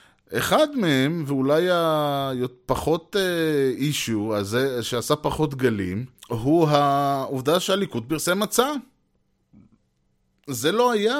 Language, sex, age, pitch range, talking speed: Hebrew, male, 20-39, 105-145 Hz, 85 wpm